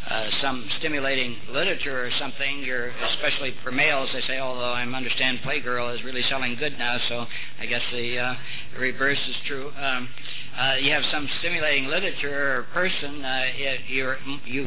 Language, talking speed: English, 160 wpm